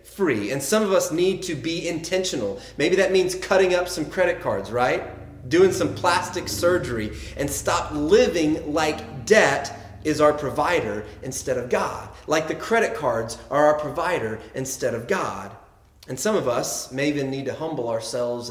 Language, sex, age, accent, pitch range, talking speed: English, male, 30-49, American, 110-160 Hz, 170 wpm